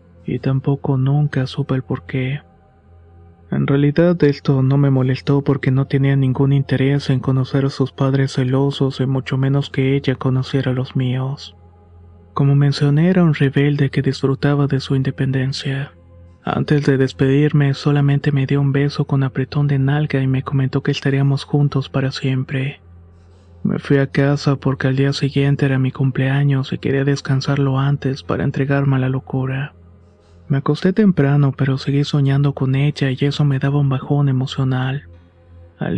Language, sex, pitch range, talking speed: Spanish, male, 130-140 Hz, 165 wpm